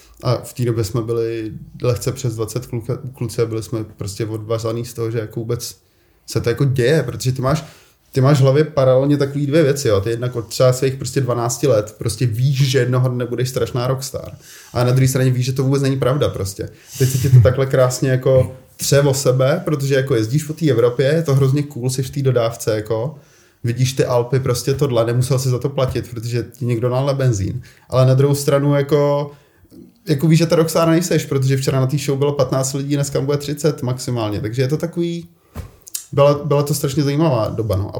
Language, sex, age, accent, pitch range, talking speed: Czech, male, 20-39, native, 120-145 Hz, 215 wpm